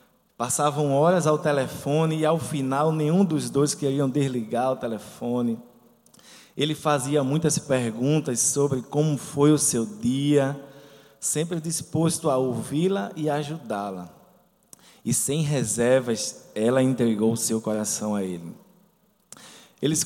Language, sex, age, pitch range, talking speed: Portuguese, male, 20-39, 125-160 Hz, 125 wpm